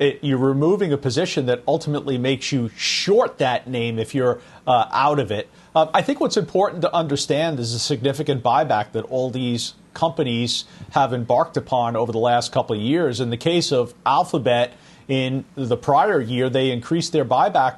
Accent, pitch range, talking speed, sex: American, 130-175 Hz, 185 wpm, male